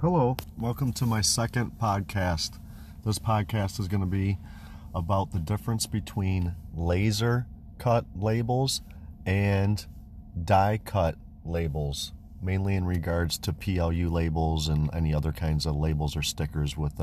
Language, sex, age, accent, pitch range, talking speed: English, male, 40-59, American, 80-100 Hz, 135 wpm